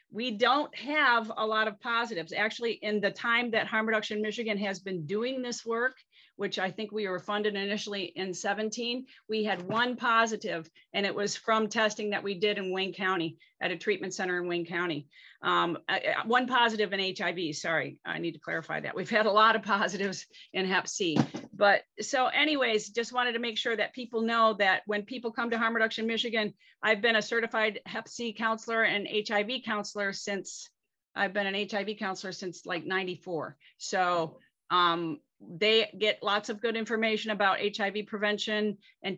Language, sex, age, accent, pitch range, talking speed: English, female, 40-59, American, 190-225 Hz, 185 wpm